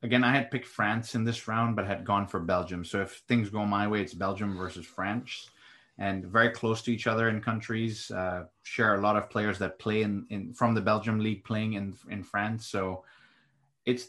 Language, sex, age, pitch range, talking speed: English, male, 30-49, 100-115 Hz, 215 wpm